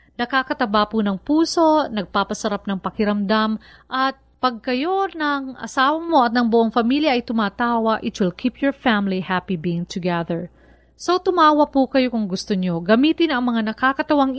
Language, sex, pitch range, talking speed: Filipino, female, 205-280 Hz, 155 wpm